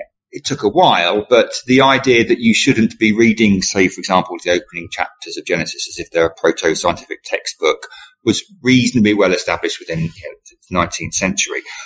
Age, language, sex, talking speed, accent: 40-59, English, male, 180 wpm, British